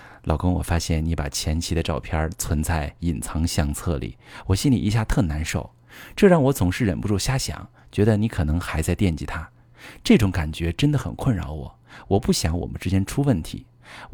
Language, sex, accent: Chinese, male, native